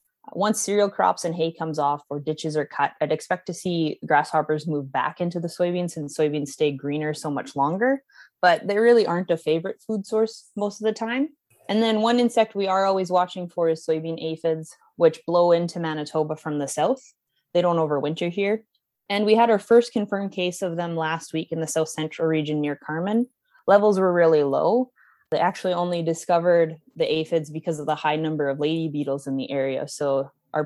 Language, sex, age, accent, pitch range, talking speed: English, female, 20-39, American, 150-190 Hz, 205 wpm